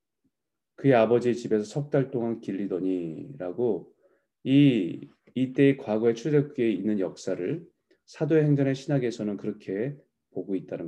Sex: male